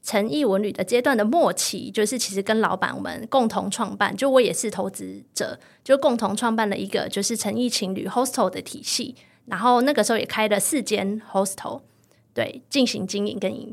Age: 20-39